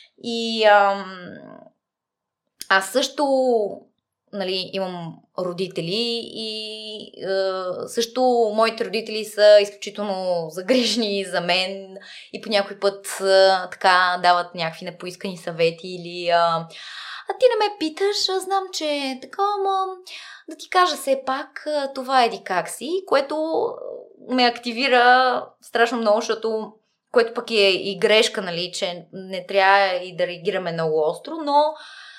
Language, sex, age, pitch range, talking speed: Bulgarian, female, 20-39, 190-270 Hz, 130 wpm